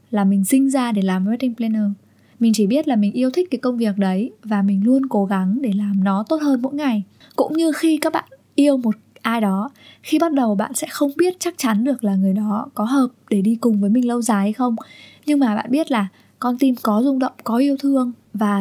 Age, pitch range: 10-29, 205-260 Hz